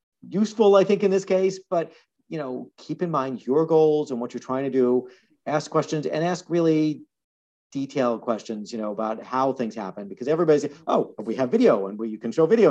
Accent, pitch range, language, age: American, 120-155 Hz, English, 50-69